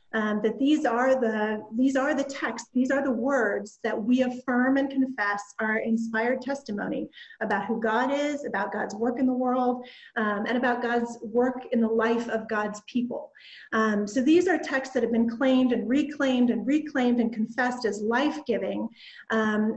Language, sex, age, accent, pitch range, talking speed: English, female, 30-49, American, 220-260 Hz, 175 wpm